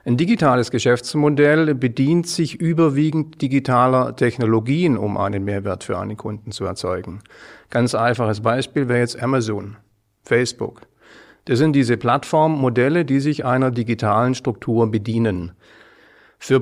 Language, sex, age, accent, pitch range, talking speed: German, male, 50-69, German, 105-130 Hz, 125 wpm